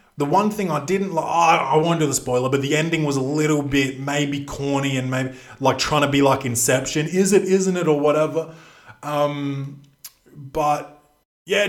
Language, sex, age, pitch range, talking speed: English, male, 20-39, 125-155 Hz, 190 wpm